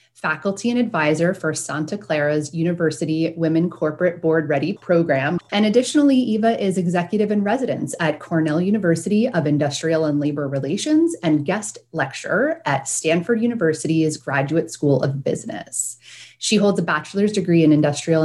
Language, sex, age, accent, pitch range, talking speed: English, female, 30-49, American, 155-200 Hz, 145 wpm